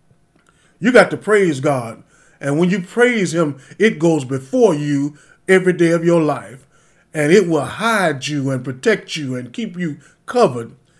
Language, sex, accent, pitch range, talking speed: English, male, American, 145-185 Hz, 170 wpm